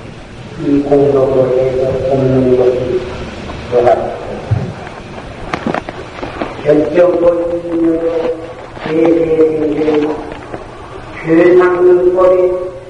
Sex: female